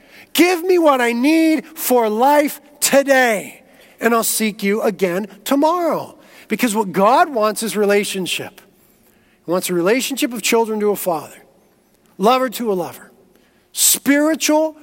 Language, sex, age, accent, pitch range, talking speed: English, male, 40-59, American, 200-275 Hz, 140 wpm